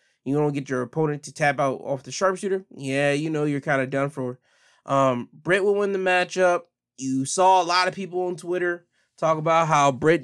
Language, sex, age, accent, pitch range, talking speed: English, male, 20-39, American, 130-155 Hz, 225 wpm